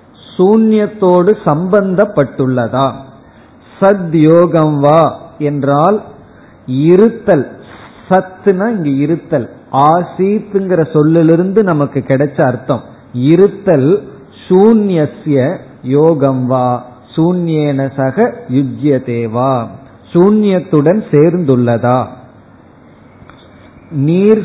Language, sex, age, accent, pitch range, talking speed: Tamil, male, 50-69, native, 130-175 Hz, 55 wpm